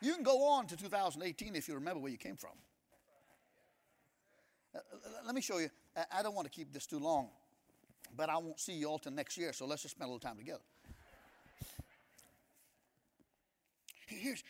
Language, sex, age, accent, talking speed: English, male, 50-69, American, 180 wpm